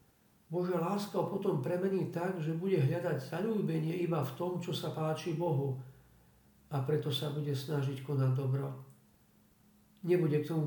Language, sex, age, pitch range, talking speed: Slovak, male, 50-69, 140-170 Hz, 150 wpm